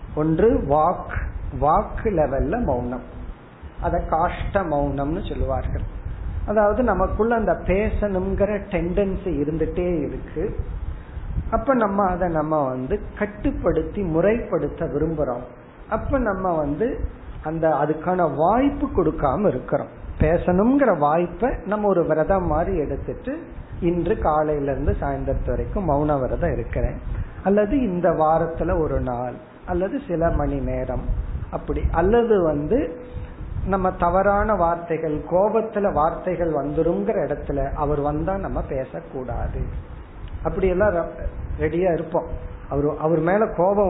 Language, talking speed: Tamil, 105 wpm